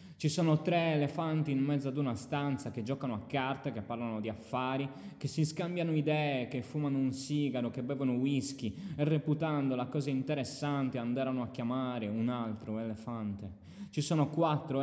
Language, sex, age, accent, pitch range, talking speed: Italian, male, 20-39, native, 115-145 Hz, 170 wpm